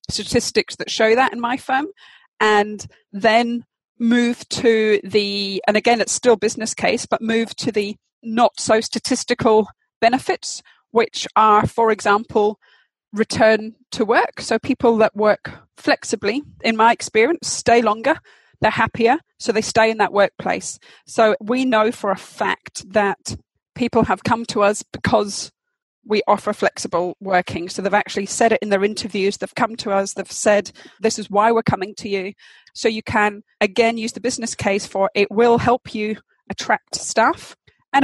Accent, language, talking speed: British, English, 165 wpm